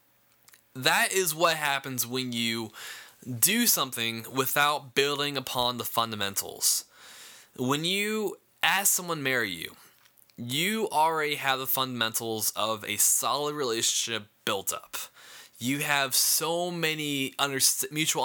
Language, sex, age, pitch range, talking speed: English, male, 10-29, 120-160 Hz, 120 wpm